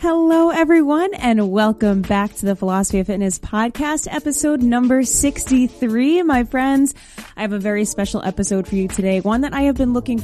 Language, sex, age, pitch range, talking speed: English, female, 20-39, 190-240 Hz, 180 wpm